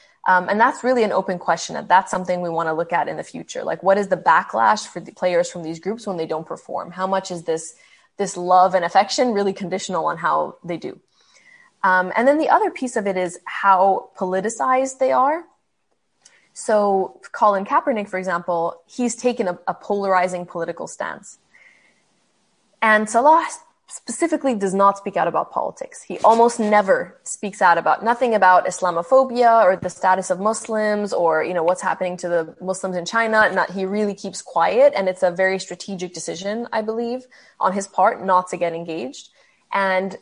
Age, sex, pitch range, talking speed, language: 20-39, female, 180-225 Hz, 190 wpm, English